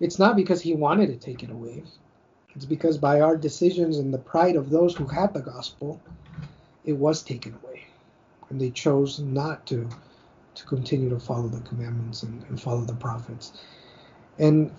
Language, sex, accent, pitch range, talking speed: English, male, American, 130-160 Hz, 180 wpm